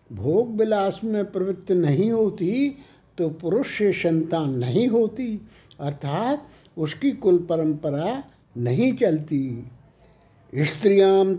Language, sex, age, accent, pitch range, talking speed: Hindi, male, 60-79, native, 160-200 Hz, 95 wpm